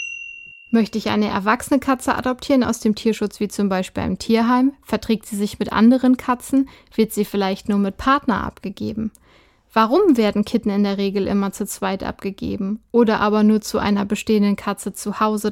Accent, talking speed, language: German, 180 wpm, German